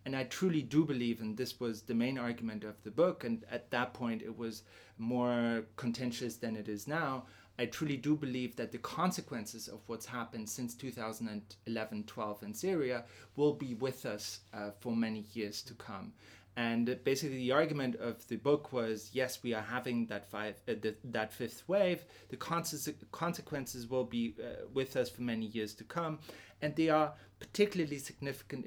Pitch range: 110-135 Hz